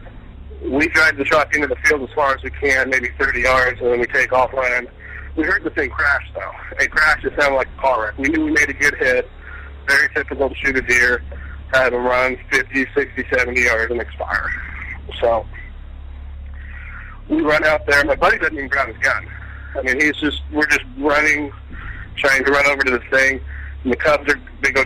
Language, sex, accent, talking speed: English, male, American, 215 wpm